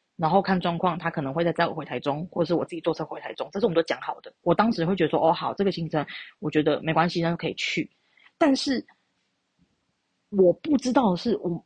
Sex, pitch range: female, 170-215 Hz